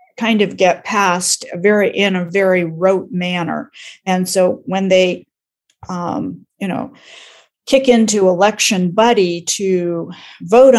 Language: English